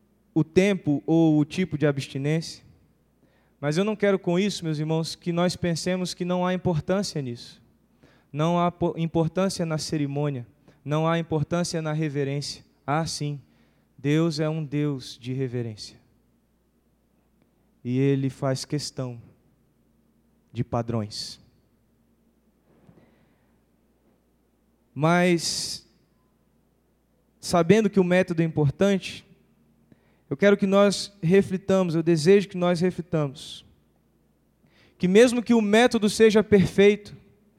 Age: 20-39